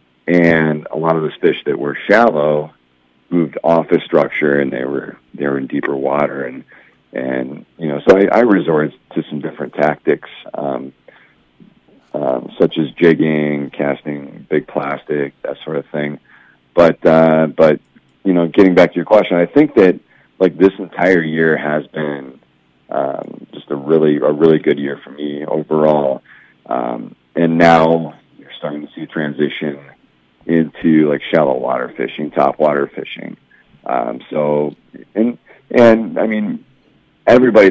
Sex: male